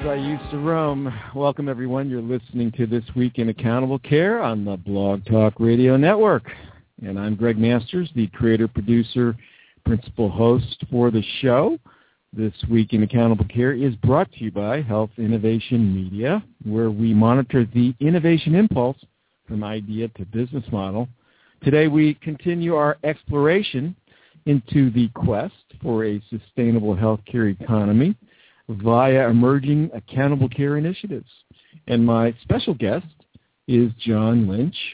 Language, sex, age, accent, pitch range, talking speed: English, male, 50-69, American, 110-135 Hz, 140 wpm